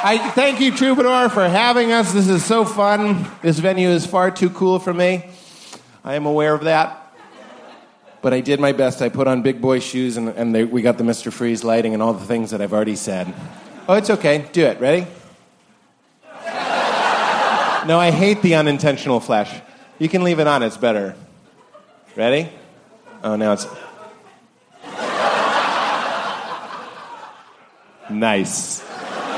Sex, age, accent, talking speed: male, 30-49, American, 155 wpm